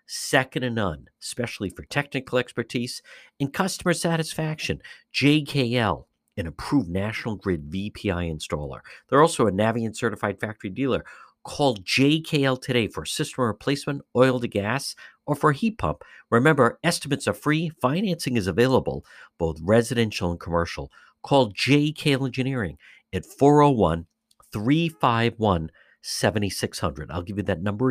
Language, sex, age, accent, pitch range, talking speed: English, male, 50-69, American, 95-140 Hz, 125 wpm